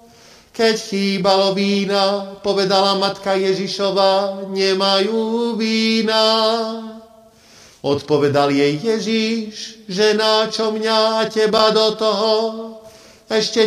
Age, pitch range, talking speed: 50-69, 195-225 Hz, 85 wpm